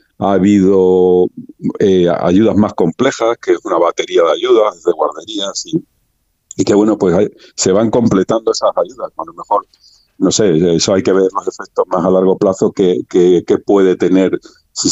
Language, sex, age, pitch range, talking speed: Spanish, male, 50-69, 85-110 Hz, 185 wpm